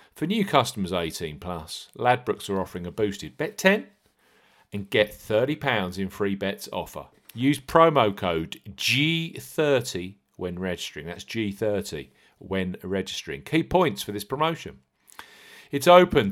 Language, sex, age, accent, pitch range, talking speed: English, male, 40-59, British, 95-140 Hz, 130 wpm